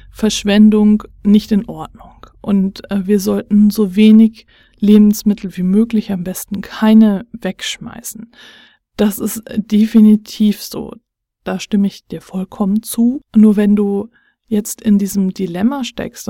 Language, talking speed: German, 125 wpm